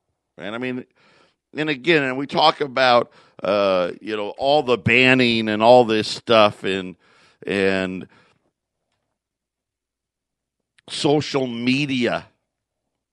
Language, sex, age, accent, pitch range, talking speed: English, male, 50-69, American, 105-135 Hz, 105 wpm